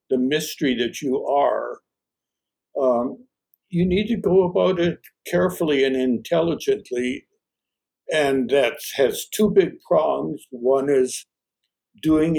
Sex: male